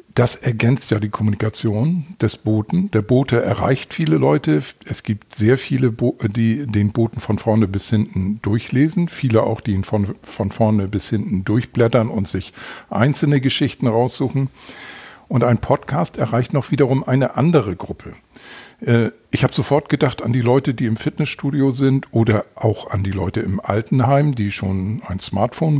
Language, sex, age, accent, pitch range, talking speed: German, male, 50-69, German, 105-130 Hz, 165 wpm